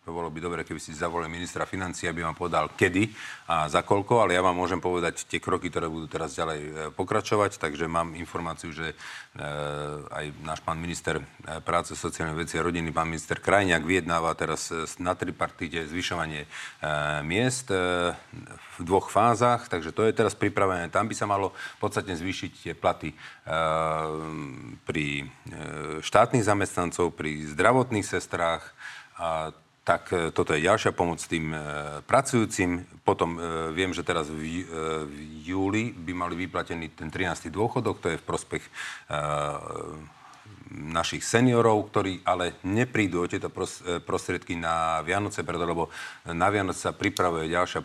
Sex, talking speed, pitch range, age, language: male, 155 wpm, 80-90 Hz, 40-59, Slovak